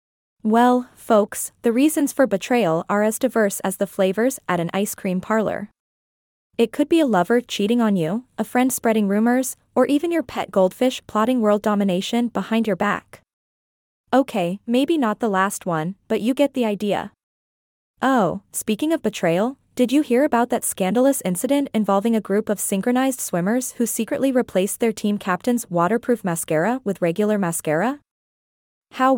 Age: 20-39